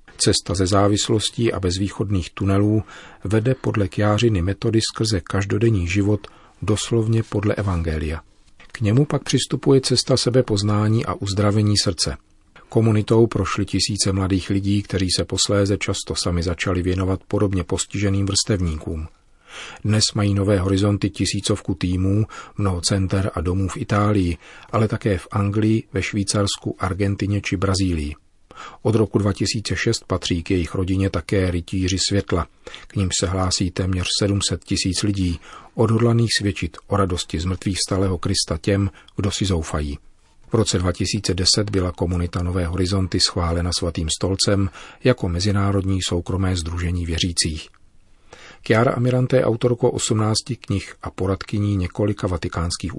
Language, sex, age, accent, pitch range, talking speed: Czech, male, 40-59, native, 90-105 Hz, 130 wpm